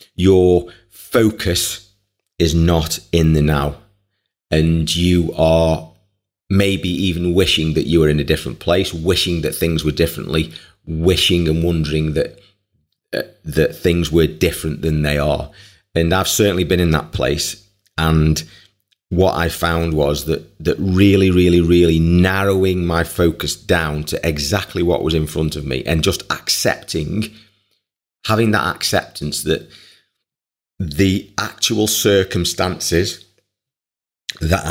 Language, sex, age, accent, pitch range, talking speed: English, male, 30-49, British, 80-100 Hz, 135 wpm